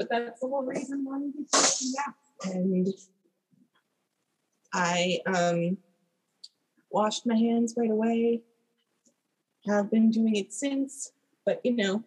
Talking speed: 115 wpm